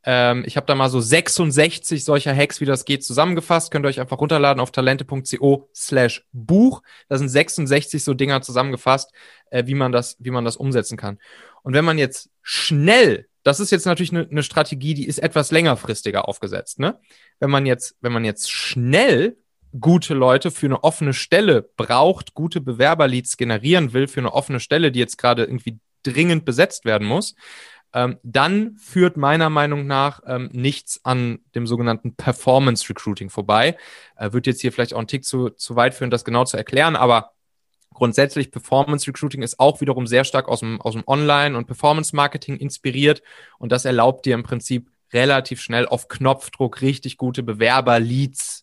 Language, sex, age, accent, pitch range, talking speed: German, male, 30-49, German, 115-145 Hz, 170 wpm